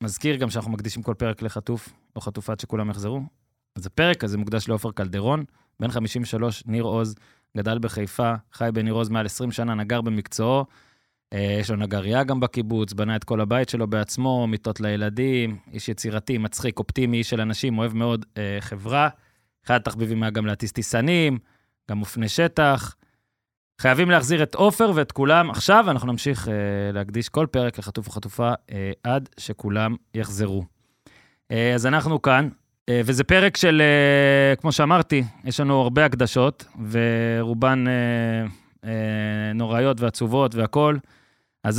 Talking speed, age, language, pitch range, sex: 150 wpm, 20-39, Hebrew, 110-135 Hz, male